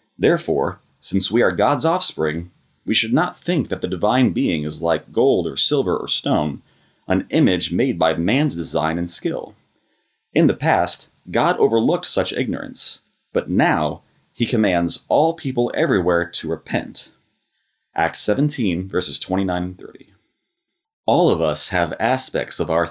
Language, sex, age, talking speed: English, male, 30-49, 150 wpm